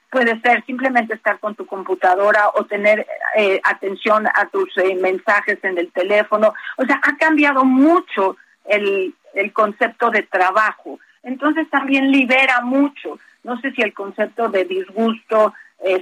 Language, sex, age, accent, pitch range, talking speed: Spanish, female, 50-69, Mexican, 205-260 Hz, 150 wpm